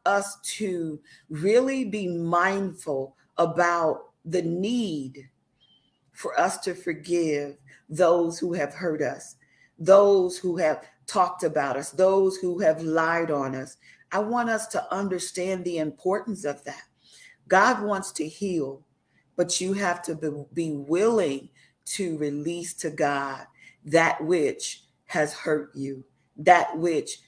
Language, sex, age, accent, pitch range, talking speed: English, female, 40-59, American, 150-190 Hz, 130 wpm